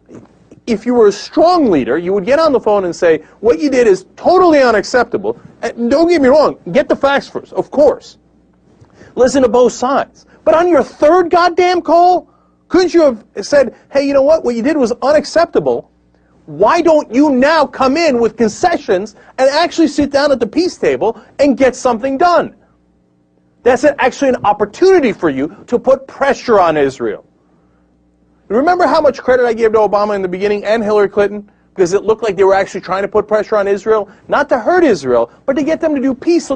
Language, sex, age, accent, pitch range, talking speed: English, male, 40-59, American, 195-295 Hz, 205 wpm